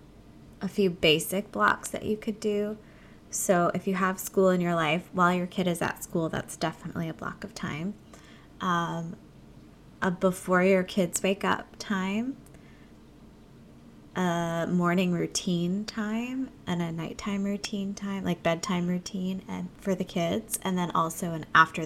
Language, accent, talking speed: English, American, 155 wpm